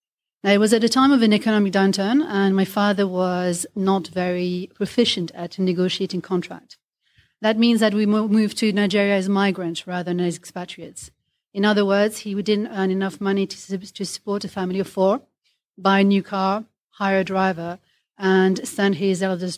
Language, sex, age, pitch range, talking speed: English, female, 30-49, 175-205 Hz, 180 wpm